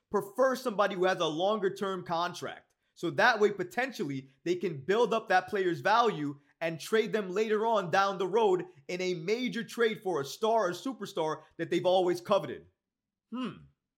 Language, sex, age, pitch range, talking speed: English, male, 30-49, 170-215 Hz, 170 wpm